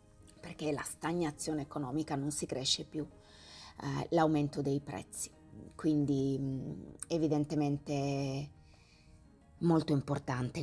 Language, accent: Italian, native